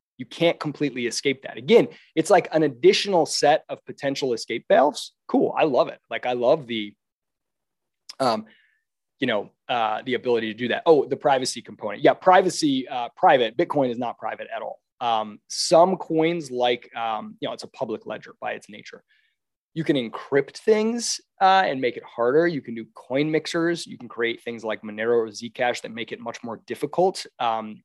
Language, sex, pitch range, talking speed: English, male, 115-160 Hz, 190 wpm